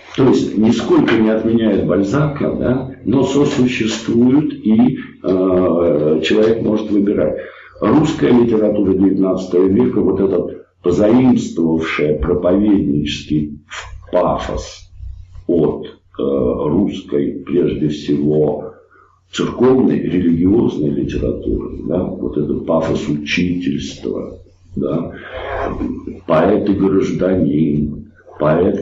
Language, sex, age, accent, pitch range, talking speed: Russian, male, 60-79, native, 80-105 Hz, 85 wpm